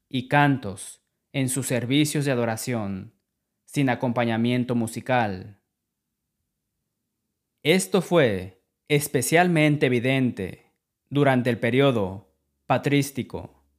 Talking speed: 80 wpm